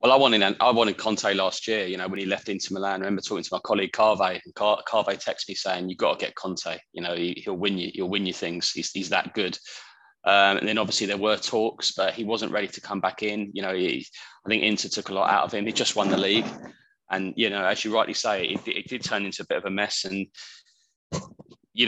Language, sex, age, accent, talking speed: English, male, 20-39, British, 260 wpm